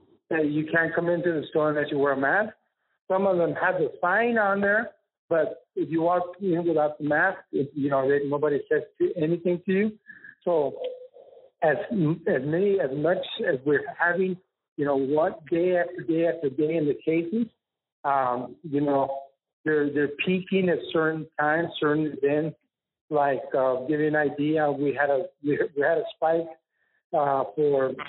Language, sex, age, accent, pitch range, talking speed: English, male, 60-79, American, 145-185 Hz, 175 wpm